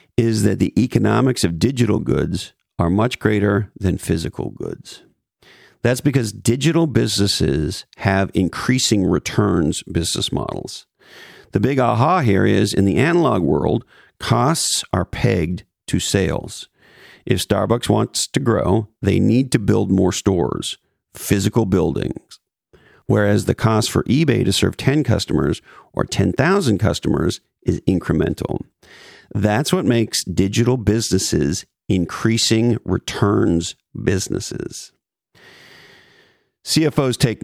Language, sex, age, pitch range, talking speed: English, male, 50-69, 95-120 Hz, 115 wpm